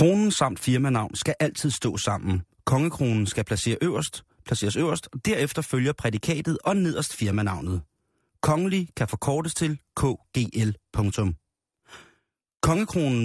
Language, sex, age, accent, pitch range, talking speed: Danish, male, 30-49, native, 110-155 Hz, 120 wpm